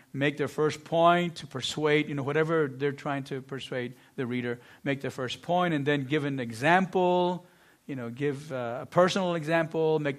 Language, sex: English, male